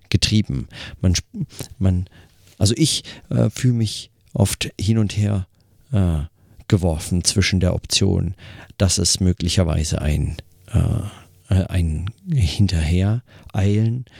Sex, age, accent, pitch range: male, 40-59, German, 90-110 Hz